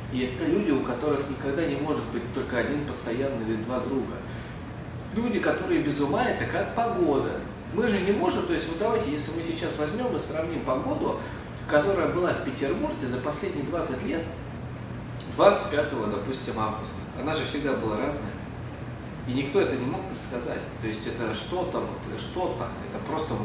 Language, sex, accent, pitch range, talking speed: Russian, male, native, 120-170 Hz, 175 wpm